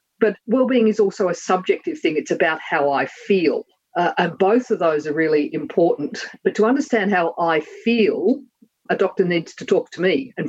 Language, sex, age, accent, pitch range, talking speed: English, female, 50-69, Australian, 150-210 Hz, 195 wpm